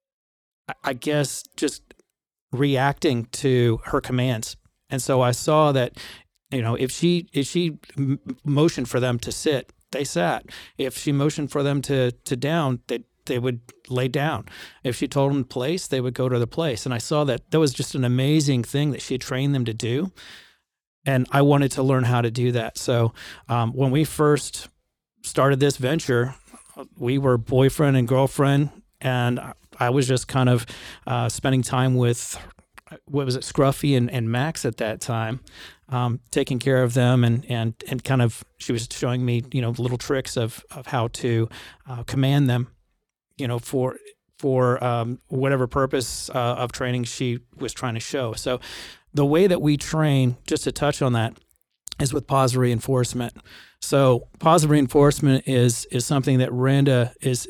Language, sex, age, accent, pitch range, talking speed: English, male, 40-59, American, 120-140 Hz, 180 wpm